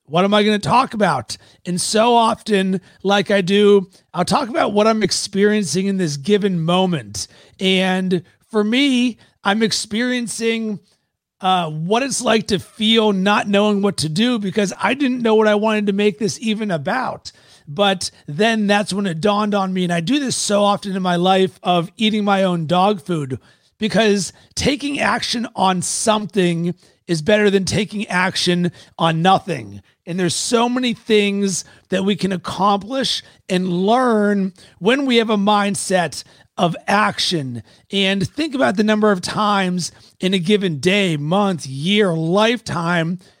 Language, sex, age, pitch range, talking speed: English, male, 30-49, 180-220 Hz, 165 wpm